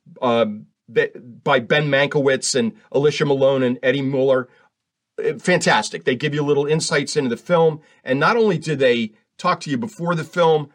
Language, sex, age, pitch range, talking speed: English, male, 40-59, 130-195 Hz, 165 wpm